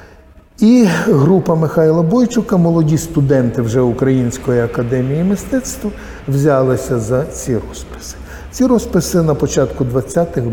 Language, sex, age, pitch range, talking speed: Ukrainian, male, 50-69, 120-150 Hz, 110 wpm